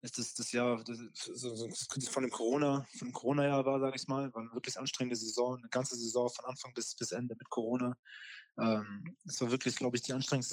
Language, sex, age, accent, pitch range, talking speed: German, male, 20-39, German, 110-125 Hz, 230 wpm